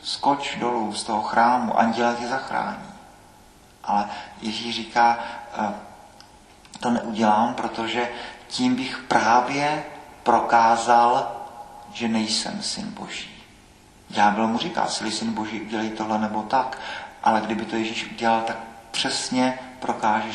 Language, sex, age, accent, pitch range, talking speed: Czech, male, 40-59, native, 115-140 Hz, 120 wpm